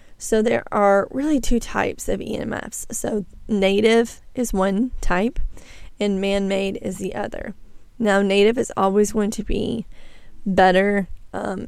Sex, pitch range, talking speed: female, 195-225 Hz, 140 wpm